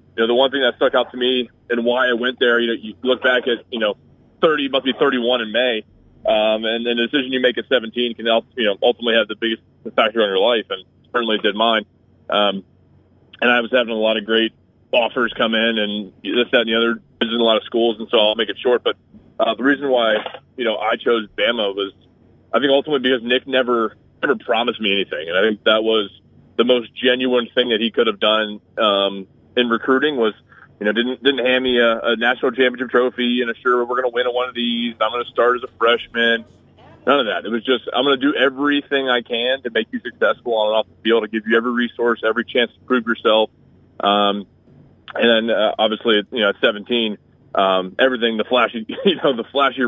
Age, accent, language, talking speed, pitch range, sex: 20-39, American, English, 240 wpm, 110-125 Hz, male